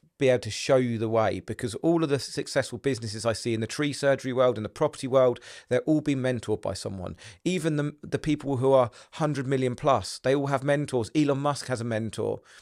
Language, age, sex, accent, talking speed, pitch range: English, 40-59, male, British, 230 wpm, 115-140 Hz